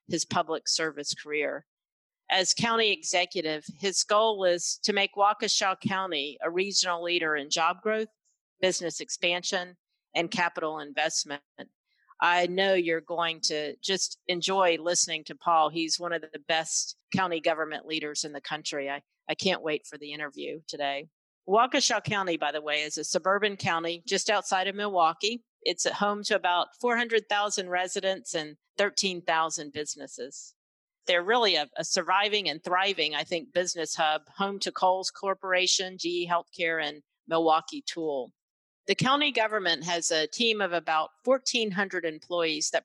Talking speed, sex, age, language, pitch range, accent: 150 wpm, female, 50-69, English, 160-195 Hz, American